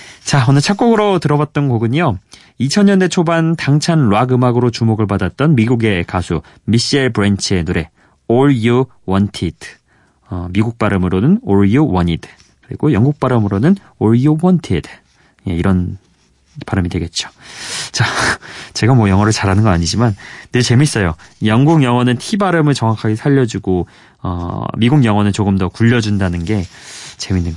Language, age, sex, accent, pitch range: Korean, 30-49, male, native, 100-145 Hz